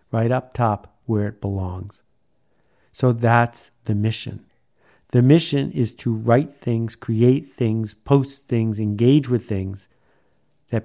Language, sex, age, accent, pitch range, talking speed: English, male, 50-69, American, 110-135 Hz, 135 wpm